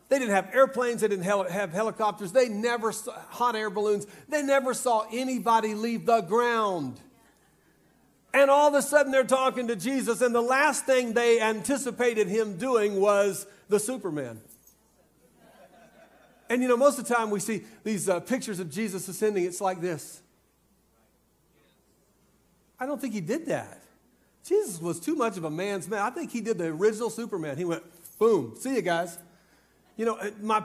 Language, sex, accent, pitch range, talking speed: English, male, American, 185-235 Hz, 175 wpm